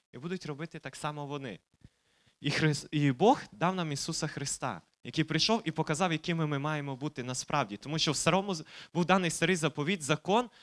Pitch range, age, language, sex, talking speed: 130-170 Hz, 20-39, Ukrainian, male, 170 wpm